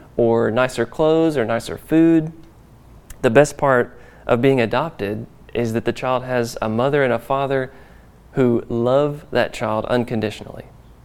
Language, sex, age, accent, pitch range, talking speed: English, male, 30-49, American, 115-140 Hz, 145 wpm